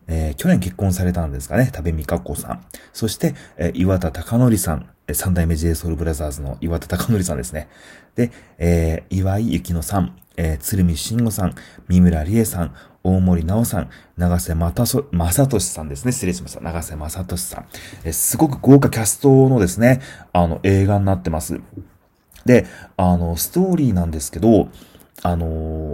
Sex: male